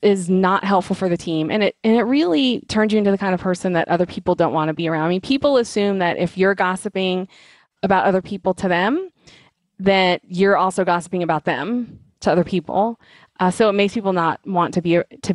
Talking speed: 225 wpm